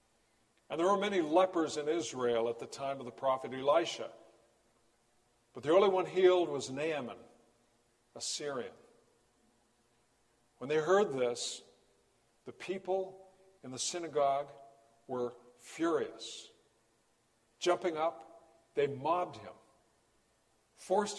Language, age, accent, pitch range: English, 60-79, American, 110-160 Hz